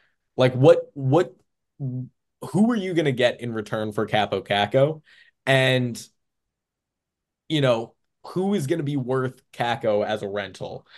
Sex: male